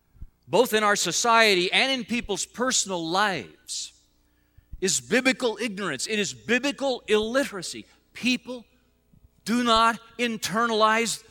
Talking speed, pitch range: 105 wpm, 150-210 Hz